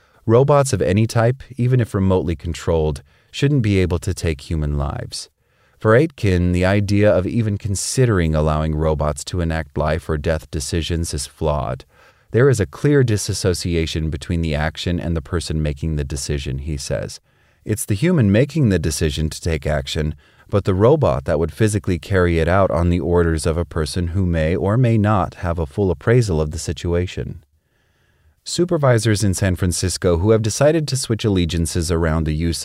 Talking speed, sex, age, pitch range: 180 wpm, male, 30-49, 80-100 Hz